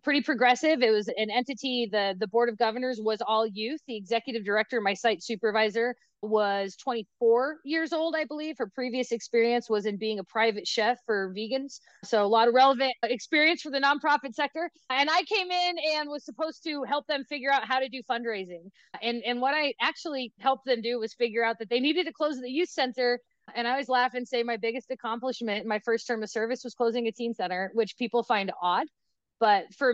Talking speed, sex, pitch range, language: 215 wpm, female, 215-295 Hz, English